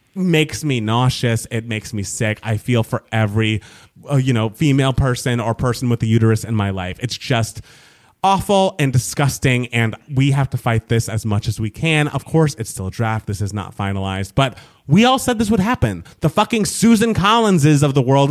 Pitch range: 115-185 Hz